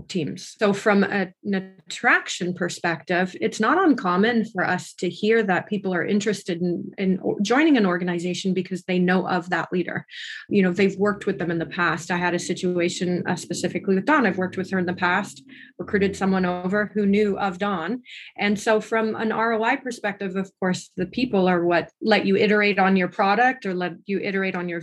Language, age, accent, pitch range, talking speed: English, 30-49, American, 175-200 Hz, 205 wpm